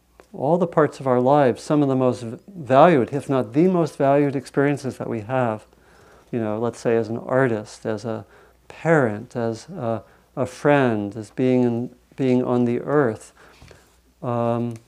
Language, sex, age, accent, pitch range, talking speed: English, male, 50-69, American, 120-150 Hz, 170 wpm